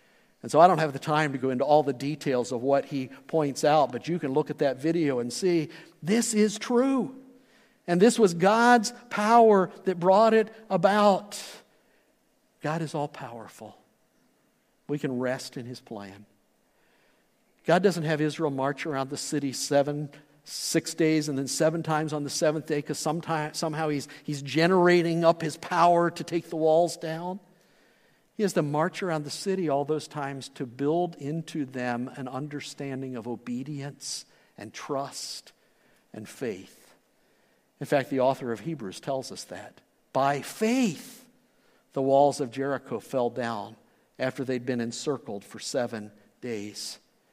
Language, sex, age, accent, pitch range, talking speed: English, male, 50-69, American, 135-175 Hz, 160 wpm